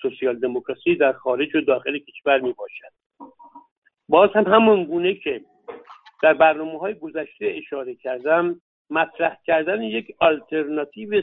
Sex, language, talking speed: male, Persian, 120 wpm